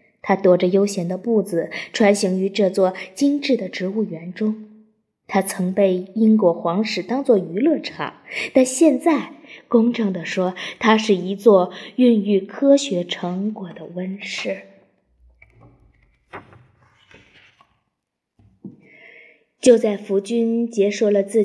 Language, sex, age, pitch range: Chinese, female, 20-39, 185-250 Hz